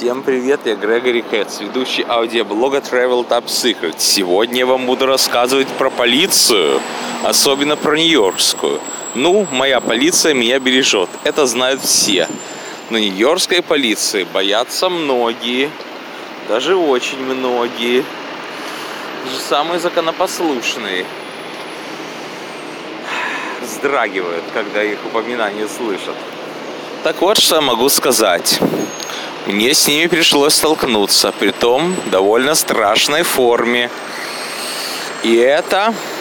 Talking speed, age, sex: 100 wpm, 20-39, male